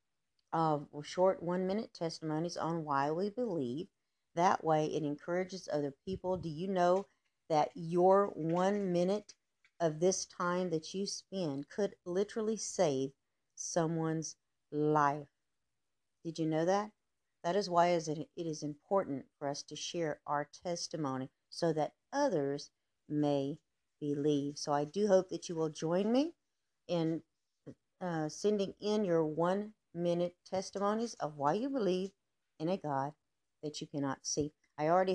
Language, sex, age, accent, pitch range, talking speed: English, female, 50-69, American, 150-190 Hz, 145 wpm